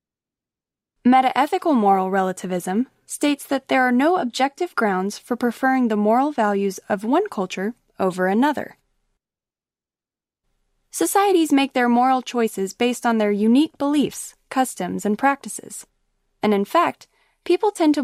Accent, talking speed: American, 130 wpm